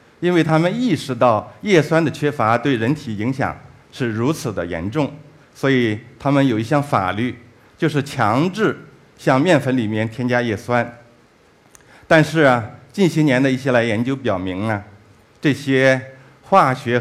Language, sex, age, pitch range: Chinese, male, 50-69, 110-145 Hz